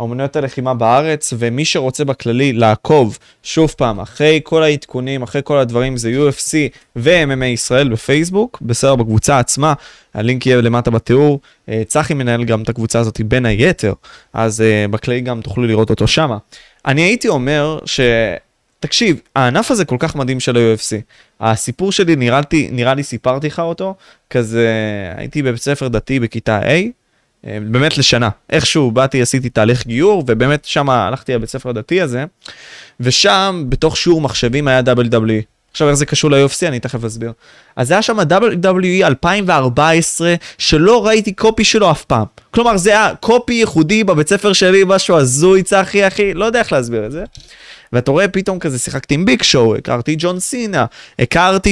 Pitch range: 120-165 Hz